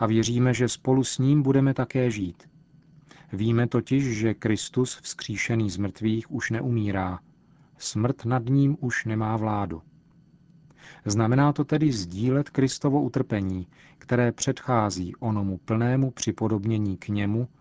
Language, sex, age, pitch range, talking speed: Czech, male, 40-59, 110-135 Hz, 125 wpm